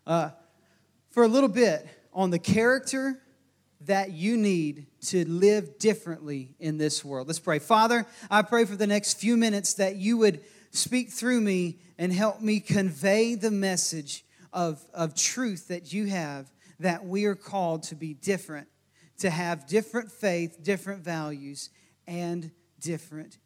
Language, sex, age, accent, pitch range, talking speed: English, male, 40-59, American, 155-215 Hz, 155 wpm